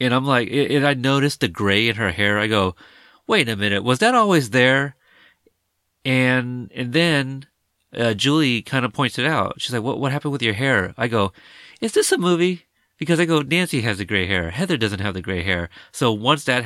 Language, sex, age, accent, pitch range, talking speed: English, male, 30-49, American, 95-125 Hz, 220 wpm